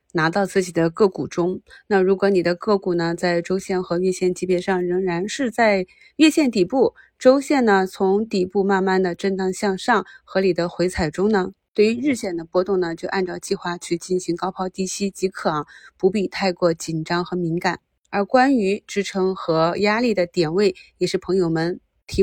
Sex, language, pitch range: female, Chinese, 180-215 Hz